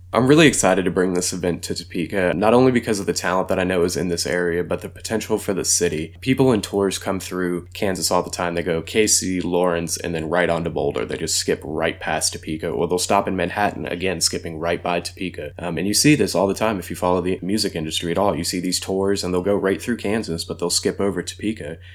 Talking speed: 255 wpm